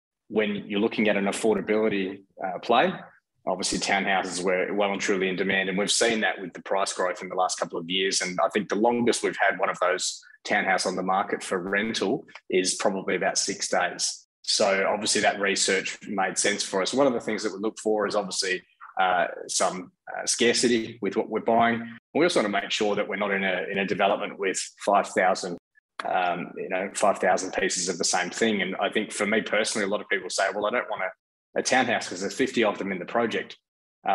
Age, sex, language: 20-39, male, English